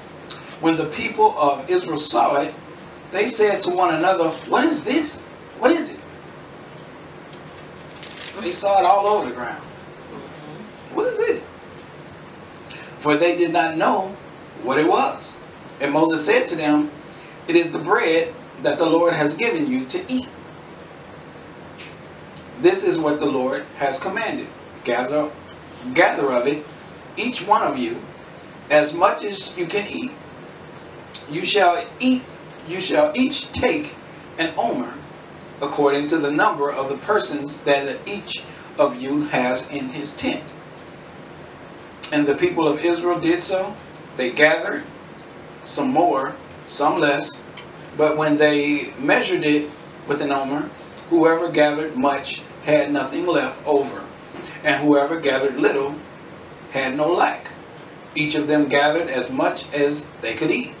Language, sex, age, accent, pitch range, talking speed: English, male, 40-59, American, 145-190 Hz, 140 wpm